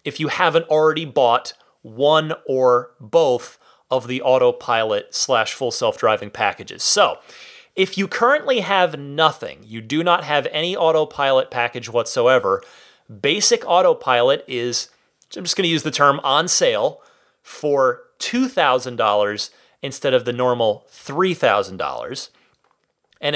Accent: American